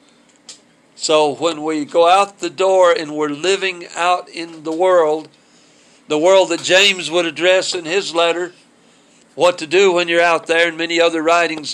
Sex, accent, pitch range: male, American, 170-205 Hz